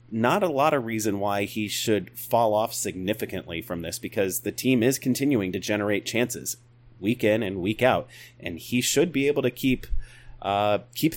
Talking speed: 190 wpm